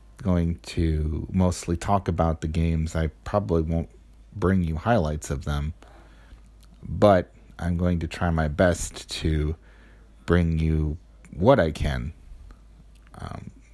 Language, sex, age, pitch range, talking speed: English, male, 40-59, 80-95 Hz, 125 wpm